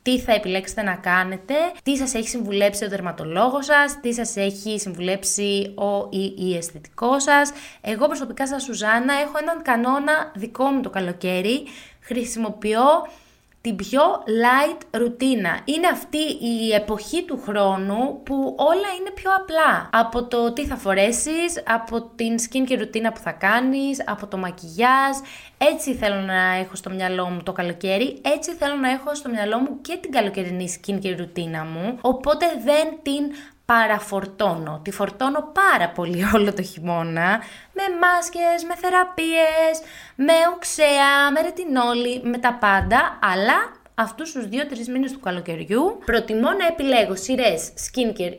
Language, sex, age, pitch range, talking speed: Greek, female, 20-39, 200-275 Hz, 150 wpm